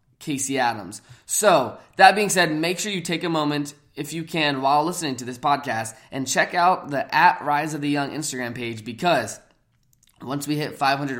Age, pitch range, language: 20-39, 125-160 Hz, English